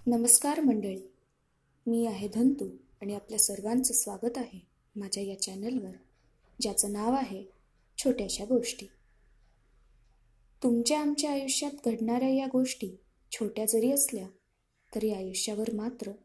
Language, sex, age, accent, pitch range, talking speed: Marathi, female, 20-39, native, 210-260 Hz, 110 wpm